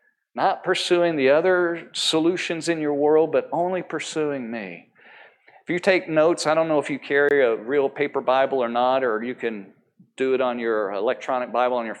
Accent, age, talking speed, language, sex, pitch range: American, 40-59, 195 wpm, English, male, 125-175 Hz